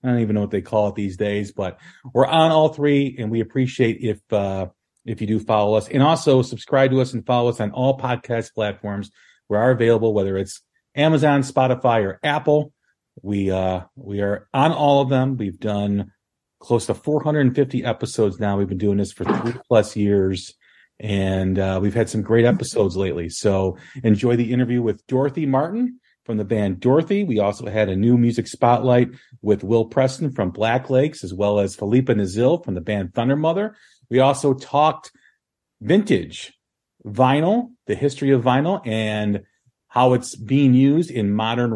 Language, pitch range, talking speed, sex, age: English, 105-135 Hz, 180 wpm, male, 40-59